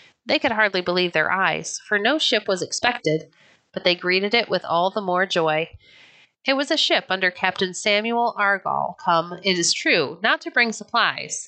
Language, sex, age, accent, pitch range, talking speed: English, female, 30-49, American, 175-235 Hz, 190 wpm